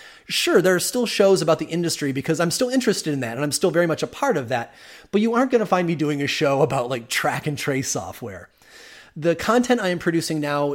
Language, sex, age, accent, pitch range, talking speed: English, male, 30-49, American, 135-190 Hz, 250 wpm